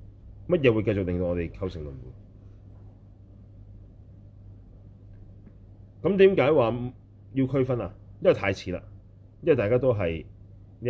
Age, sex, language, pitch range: 30-49, male, Chinese, 100-105 Hz